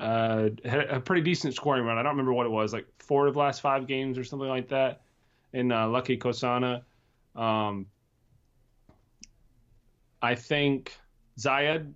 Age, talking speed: 30-49, 160 wpm